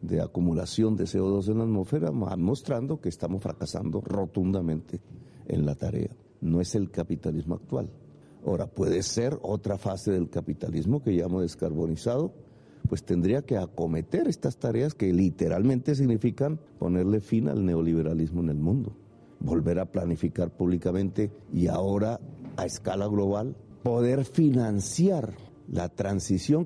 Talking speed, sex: 135 wpm, male